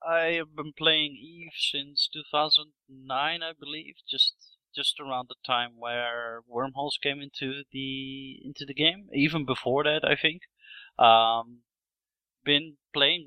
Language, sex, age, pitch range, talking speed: English, male, 30-49, 115-145 Hz, 135 wpm